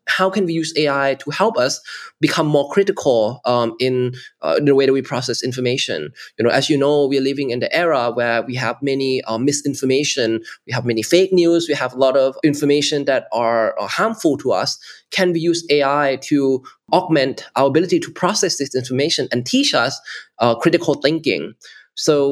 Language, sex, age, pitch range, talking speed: English, male, 20-39, 130-160 Hz, 195 wpm